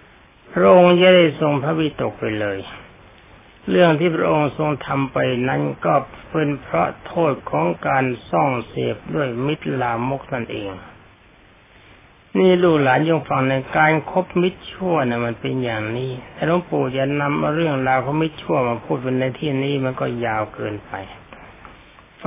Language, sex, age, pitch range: Thai, male, 60-79, 120-160 Hz